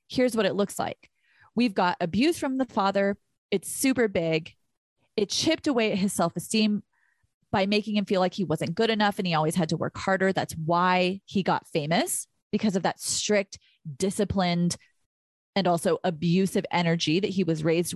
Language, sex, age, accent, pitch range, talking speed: English, female, 30-49, American, 175-230 Hz, 180 wpm